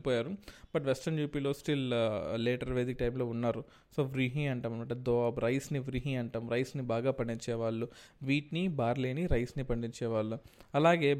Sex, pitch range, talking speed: male, 120-145 Hz, 135 wpm